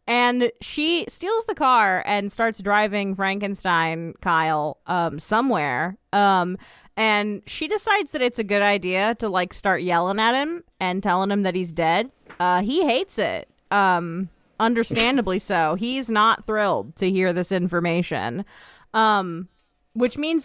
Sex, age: female, 20-39